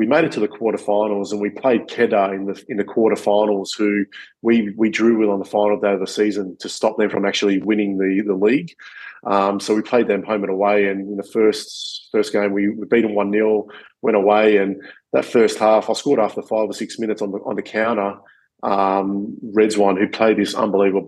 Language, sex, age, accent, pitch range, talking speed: English, male, 20-39, Australian, 100-105 Hz, 230 wpm